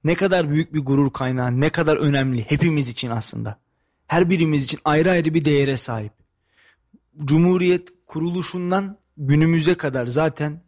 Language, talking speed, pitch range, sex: Turkish, 140 wpm, 125-165 Hz, male